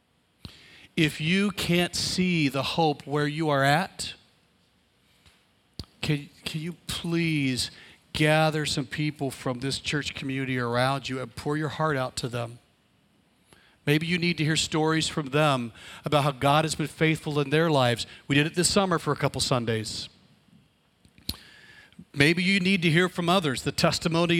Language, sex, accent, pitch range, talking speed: English, male, American, 130-160 Hz, 160 wpm